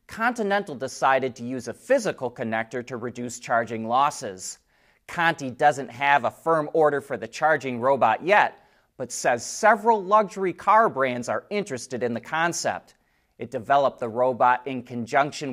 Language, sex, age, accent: English, male, 30-49, American